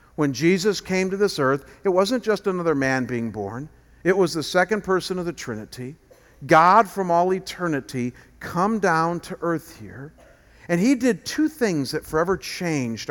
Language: English